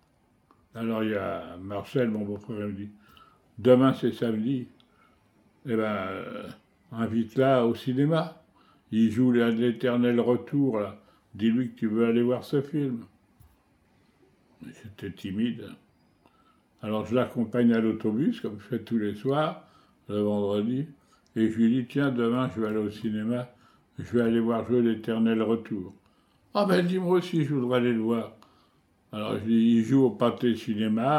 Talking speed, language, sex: 165 wpm, English, male